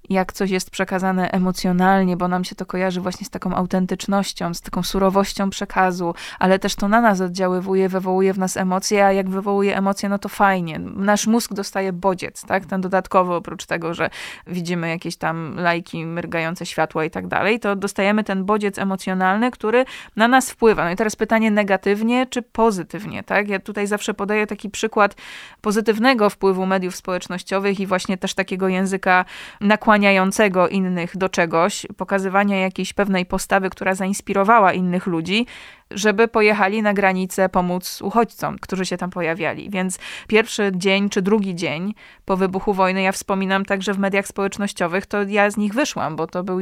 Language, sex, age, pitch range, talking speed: Polish, female, 20-39, 185-210 Hz, 165 wpm